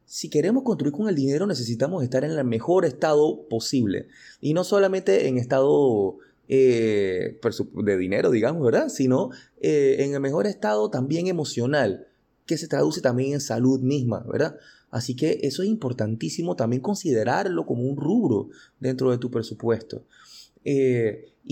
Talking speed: 150 wpm